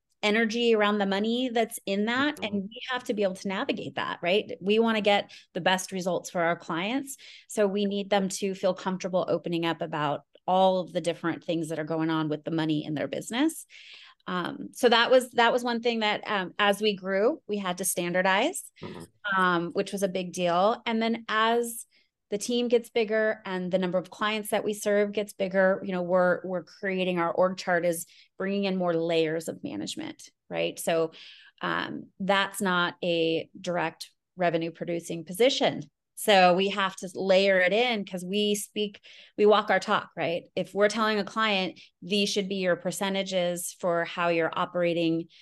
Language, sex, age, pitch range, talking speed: English, female, 30-49, 175-210 Hz, 195 wpm